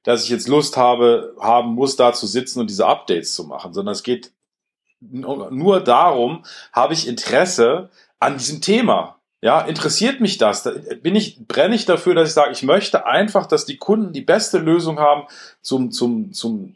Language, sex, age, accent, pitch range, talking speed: German, male, 40-59, German, 120-165 Hz, 185 wpm